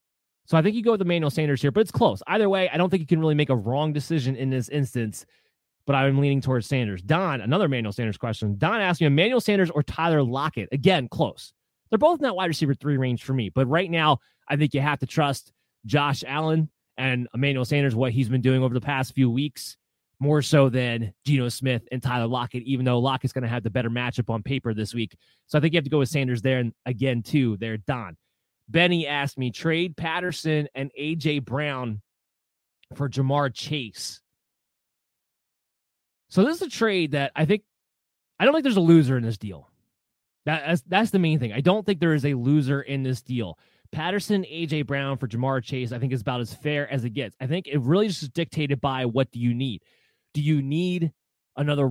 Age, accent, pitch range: 30-49, American, 125-160 Hz